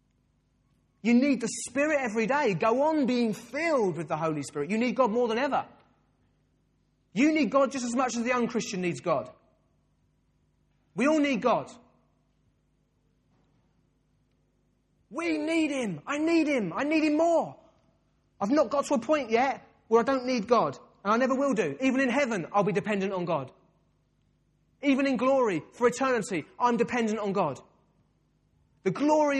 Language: English